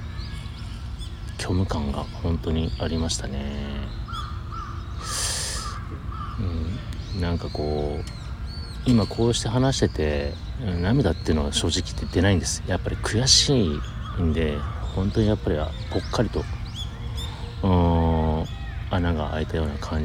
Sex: male